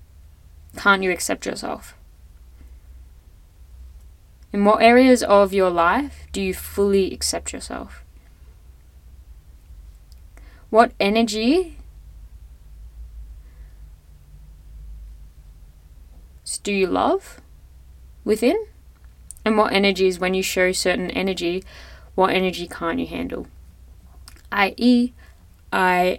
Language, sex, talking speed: English, female, 85 wpm